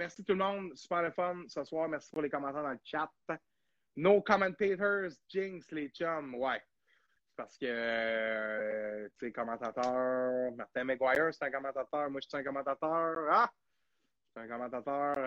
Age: 30-49